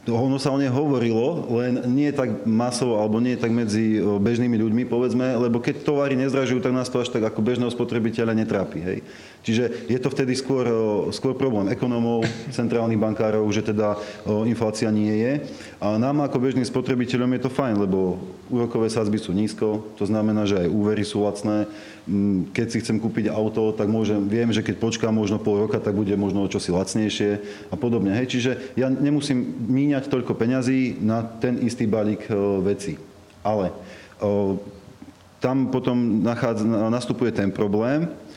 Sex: male